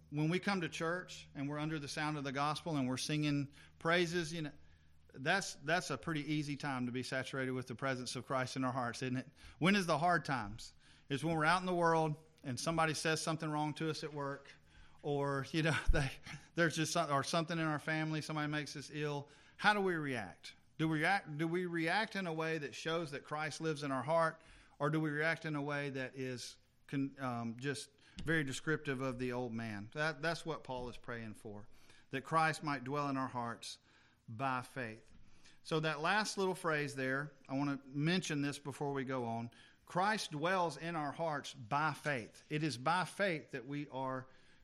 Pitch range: 130-160 Hz